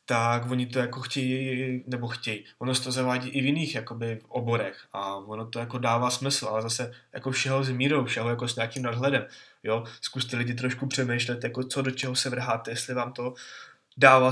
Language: Czech